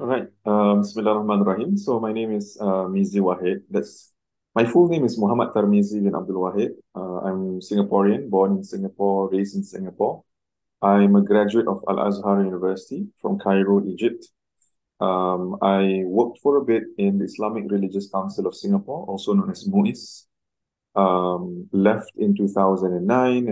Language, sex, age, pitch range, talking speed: French, male, 20-39, 95-110 Hz, 160 wpm